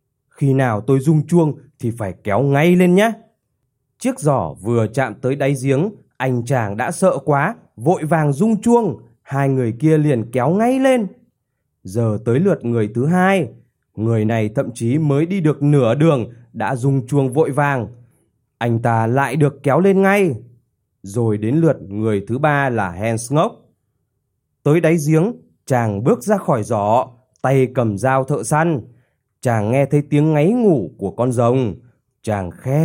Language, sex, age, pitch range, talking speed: Vietnamese, male, 20-39, 120-165 Hz, 170 wpm